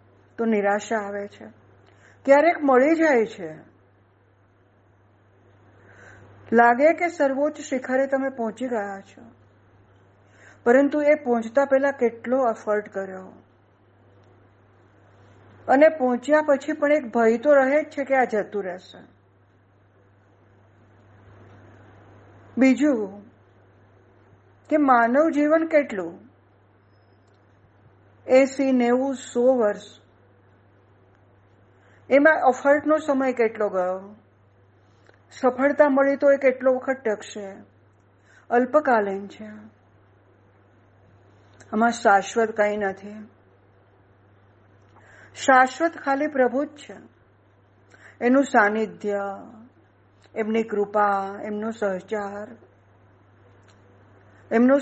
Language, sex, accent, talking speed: Gujarati, female, native, 50 wpm